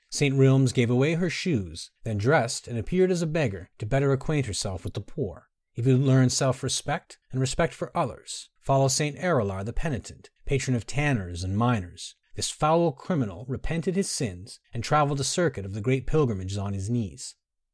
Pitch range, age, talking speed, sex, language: 105-145 Hz, 30-49, 190 wpm, male, English